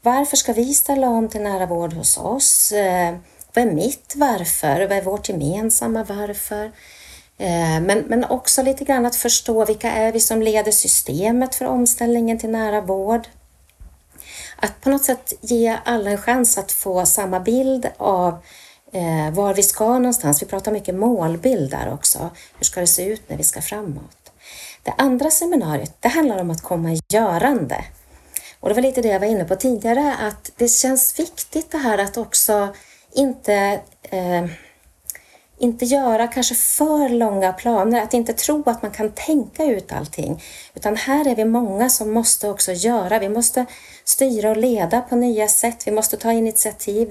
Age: 40-59